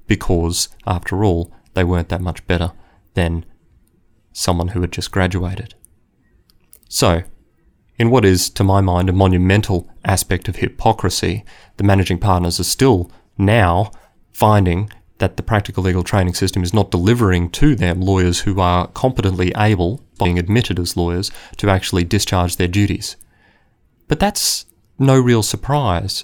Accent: Australian